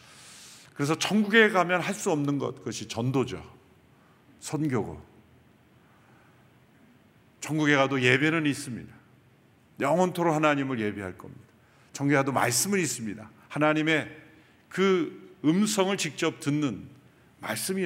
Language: Korean